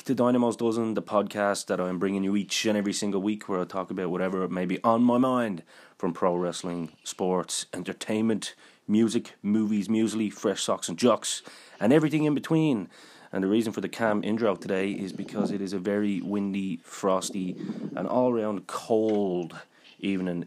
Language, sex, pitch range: English, male, 90-105 Hz